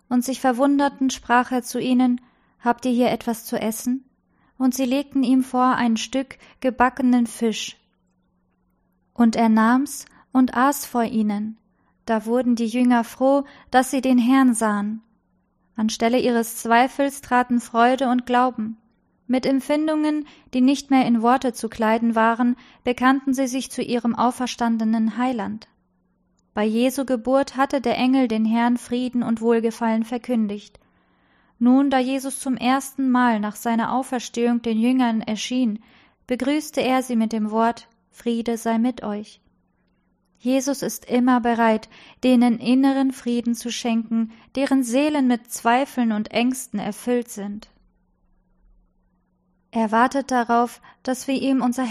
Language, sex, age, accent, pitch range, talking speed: German, female, 20-39, German, 230-260 Hz, 140 wpm